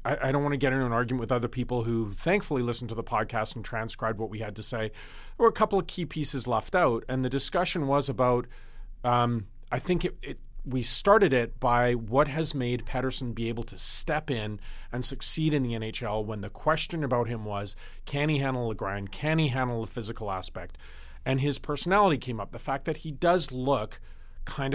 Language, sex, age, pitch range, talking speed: English, male, 40-59, 115-140 Hz, 215 wpm